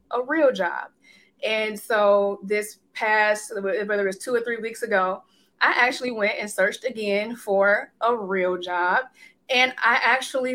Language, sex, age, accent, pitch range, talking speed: English, female, 20-39, American, 195-235 Hz, 160 wpm